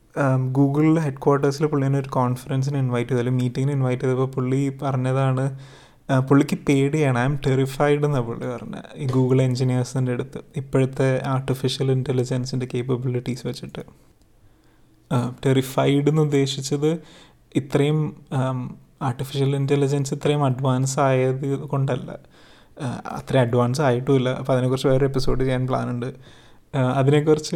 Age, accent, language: 20-39, native, Malayalam